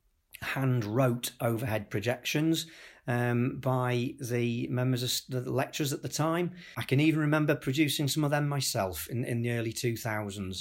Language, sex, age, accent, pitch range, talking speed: English, male, 40-59, British, 115-140 Hz, 155 wpm